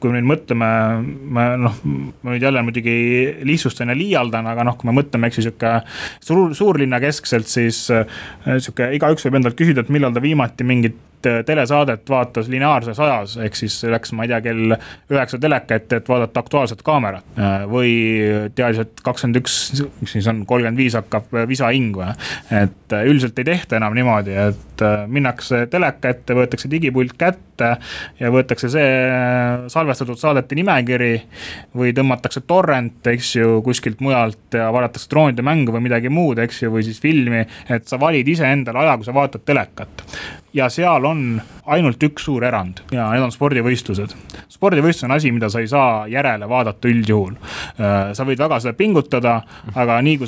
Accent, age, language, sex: Finnish, 20-39, English, male